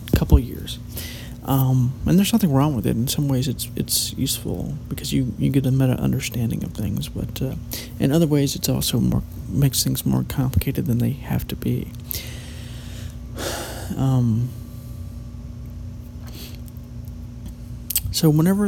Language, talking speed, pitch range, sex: English, 140 wpm, 115-135 Hz, male